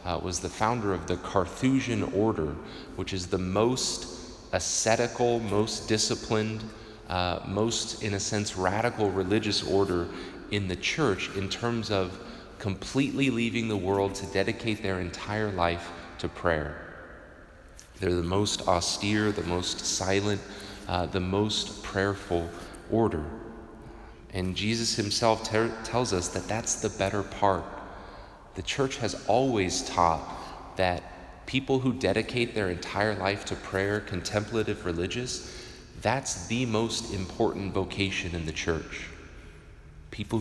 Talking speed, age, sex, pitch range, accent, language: 130 wpm, 30-49, male, 90-110 Hz, American, English